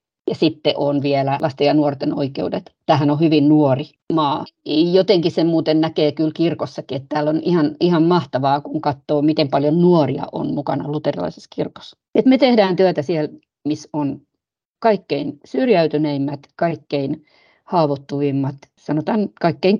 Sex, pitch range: female, 145-185 Hz